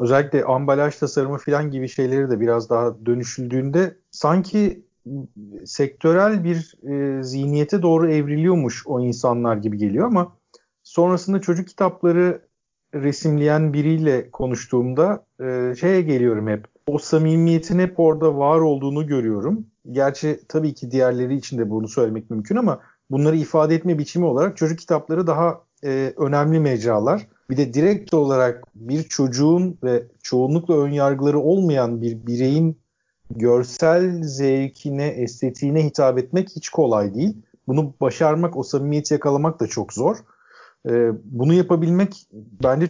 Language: Turkish